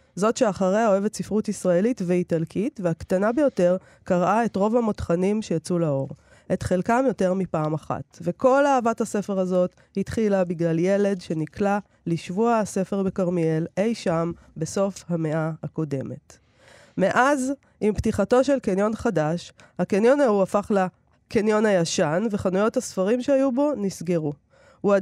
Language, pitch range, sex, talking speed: Hebrew, 175-225 Hz, female, 125 wpm